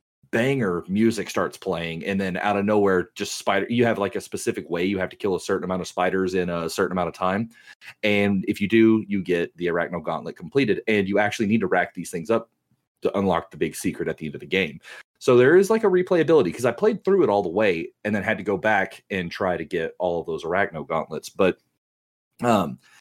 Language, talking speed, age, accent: English, 245 wpm, 30-49, American